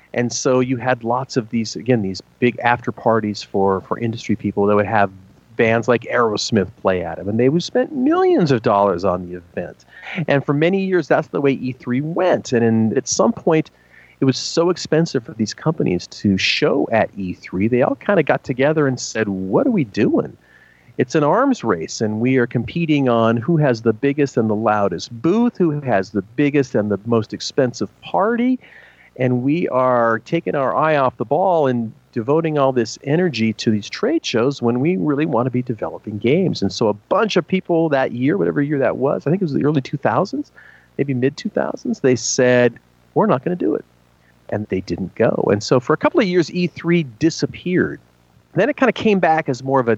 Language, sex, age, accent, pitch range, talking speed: English, male, 40-59, American, 110-155 Hz, 210 wpm